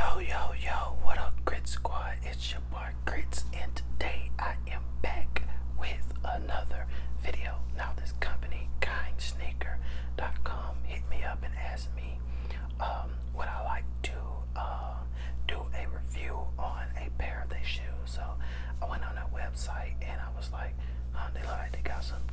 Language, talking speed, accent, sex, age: English, 160 wpm, American, male, 30-49